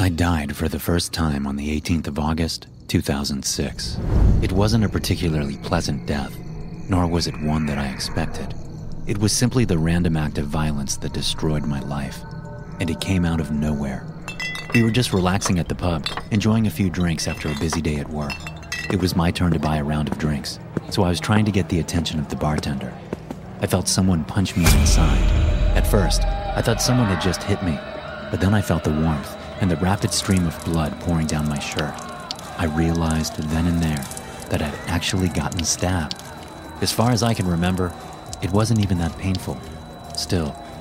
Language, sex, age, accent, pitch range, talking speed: English, male, 30-49, American, 75-95 Hz, 195 wpm